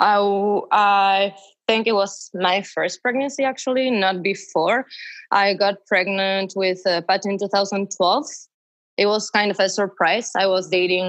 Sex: female